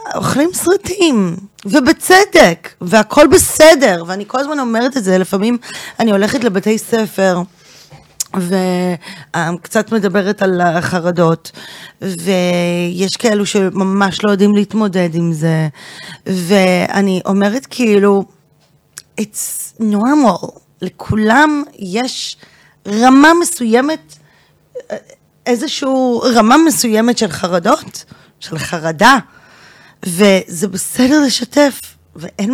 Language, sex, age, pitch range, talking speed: Hebrew, female, 20-39, 190-255 Hz, 90 wpm